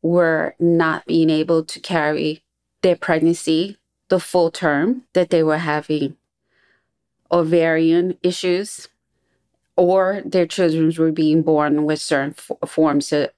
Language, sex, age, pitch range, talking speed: English, female, 30-49, 155-175 Hz, 125 wpm